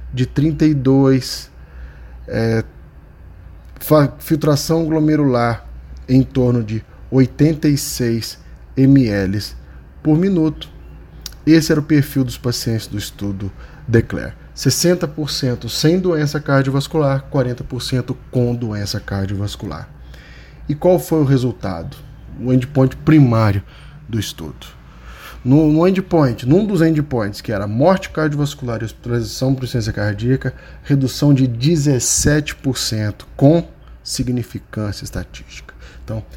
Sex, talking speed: male, 100 wpm